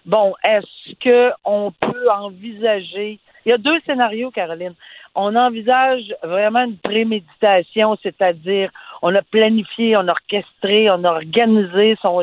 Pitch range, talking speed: 185-240 Hz, 135 wpm